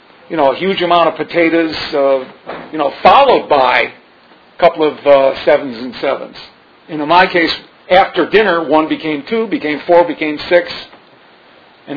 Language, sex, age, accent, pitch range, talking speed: English, male, 50-69, American, 150-185 Hz, 160 wpm